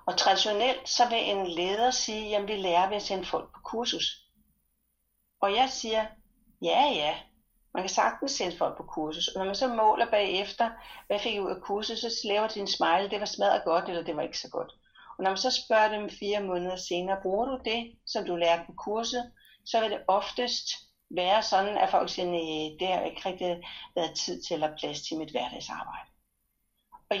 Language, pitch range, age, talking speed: Danish, 190-235 Hz, 60-79, 210 wpm